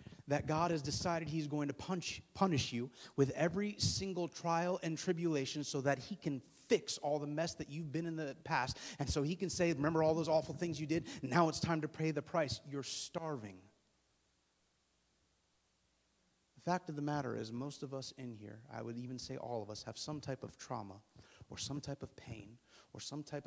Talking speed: 205 wpm